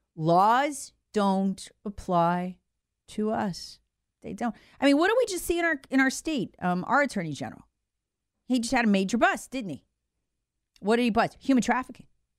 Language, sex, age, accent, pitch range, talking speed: English, female, 40-59, American, 190-295 Hz, 180 wpm